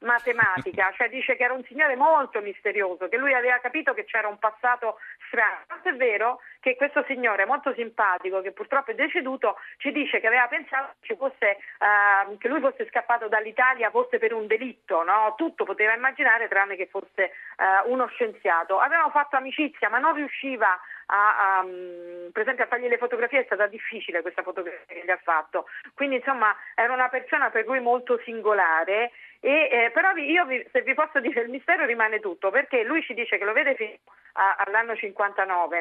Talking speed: 180 wpm